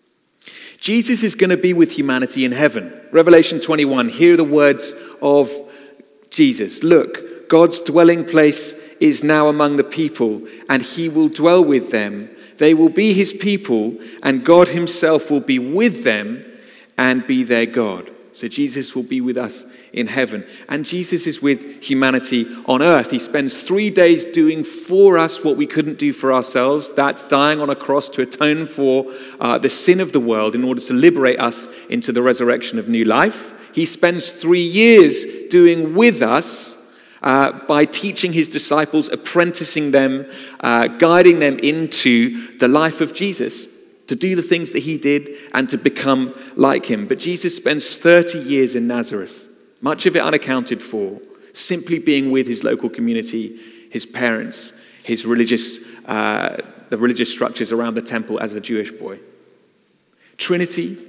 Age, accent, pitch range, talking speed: 40-59, British, 130-185 Hz, 165 wpm